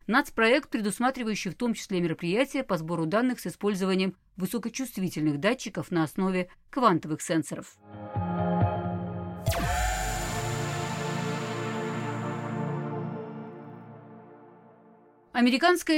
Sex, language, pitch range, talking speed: female, Russian, 175-245 Hz, 70 wpm